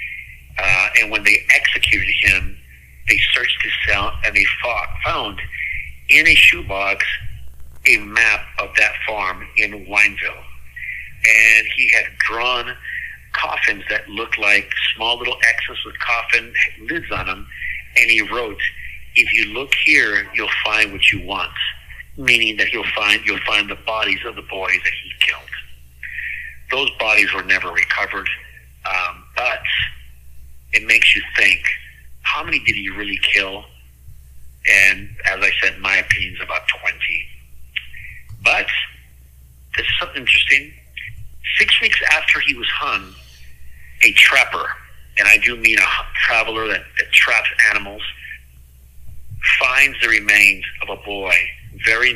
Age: 60-79